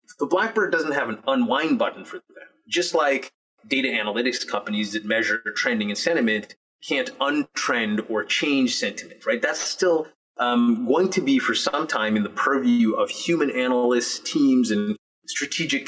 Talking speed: 165 wpm